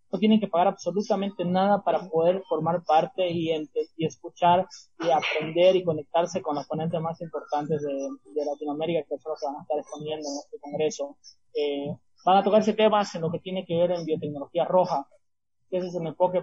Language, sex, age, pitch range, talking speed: Spanish, male, 20-39, 155-195 Hz, 205 wpm